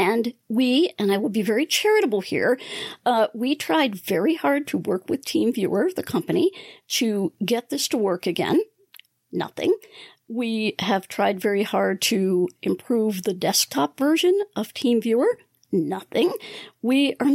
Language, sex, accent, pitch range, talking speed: English, female, American, 205-290 Hz, 145 wpm